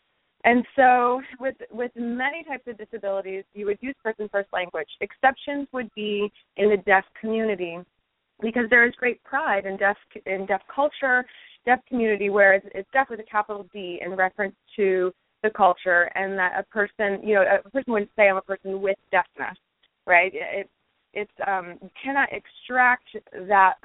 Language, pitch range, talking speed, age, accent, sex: English, 195-230 Hz, 170 wpm, 20-39, American, female